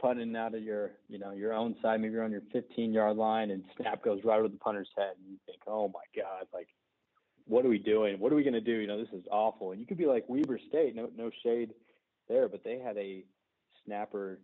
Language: English